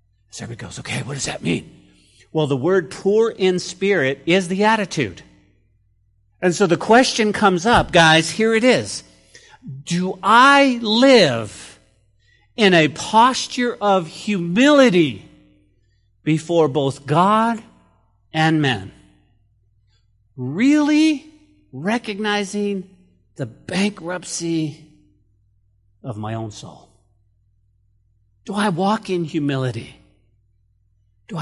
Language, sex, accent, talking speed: English, male, American, 105 wpm